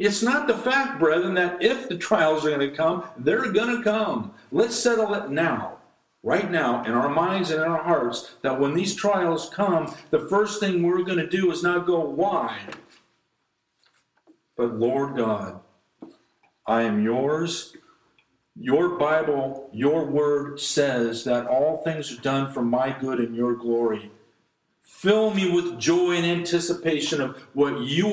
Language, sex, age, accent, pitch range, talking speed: English, male, 50-69, American, 135-175 Hz, 165 wpm